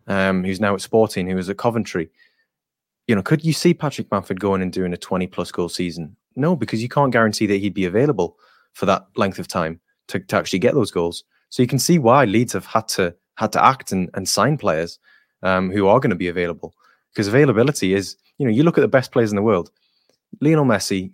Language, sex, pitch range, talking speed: English, male, 95-115 Hz, 225 wpm